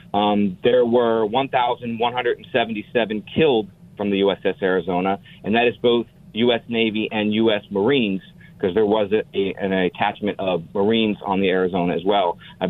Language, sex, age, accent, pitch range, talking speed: English, male, 40-59, American, 100-130 Hz, 145 wpm